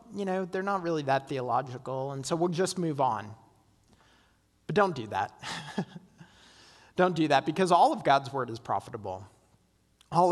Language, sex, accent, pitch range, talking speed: English, male, American, 135-170 Hz, 165 wpm